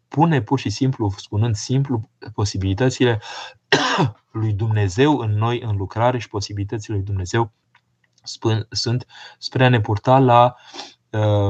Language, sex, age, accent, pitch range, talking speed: Romanian, male, 20-39, native, 105-130 Hz, 120 wpm